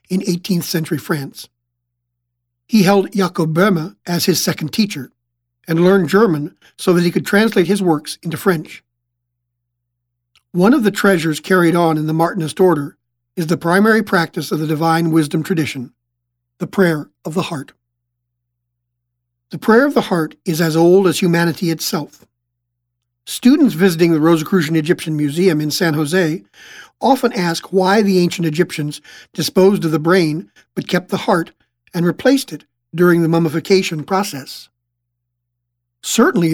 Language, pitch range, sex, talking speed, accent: English, 135-185 Hz, male, 150 wpm, American